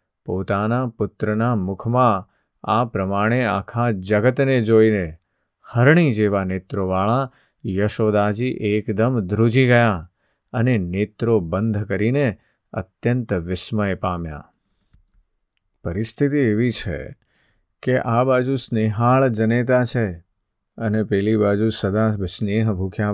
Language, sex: Gujarati, male